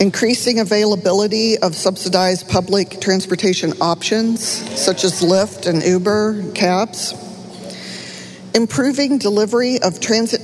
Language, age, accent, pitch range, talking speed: English, 50-69, American, 175-225 Hz, 100 wpm